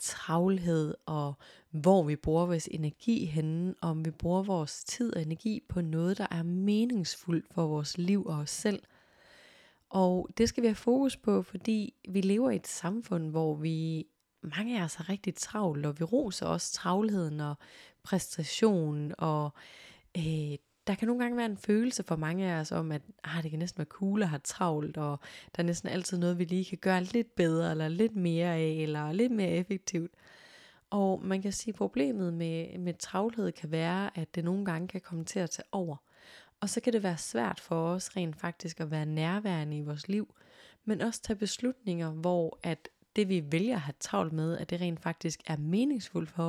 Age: 20-39